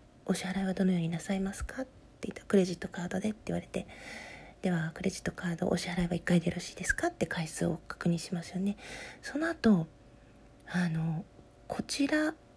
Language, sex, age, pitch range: Japanese, female, 40-59, 180-270 Hz